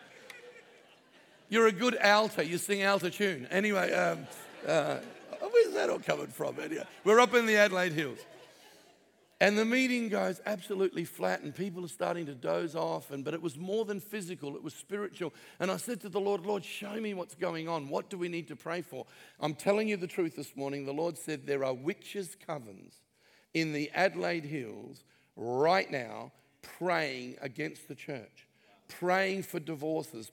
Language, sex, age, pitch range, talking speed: English, male, 50-69, 160-215 Hz, 180 wpm